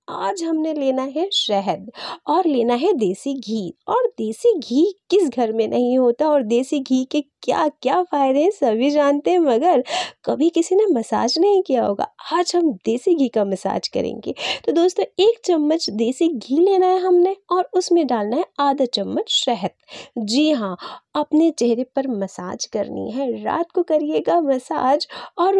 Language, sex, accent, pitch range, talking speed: Hindi, female, native, 250-350 Hz, 170 wpm